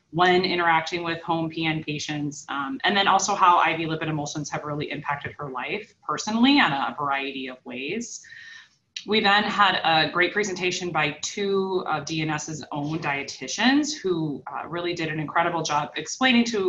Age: 20-39